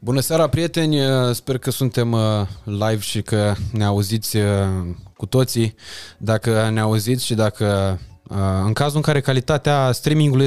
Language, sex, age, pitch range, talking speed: Romanian, male, 20-39, 110-145 Hz, 140 wpm